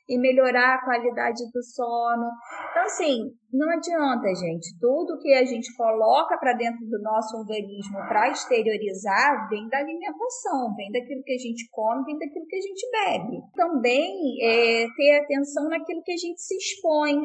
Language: Portuguese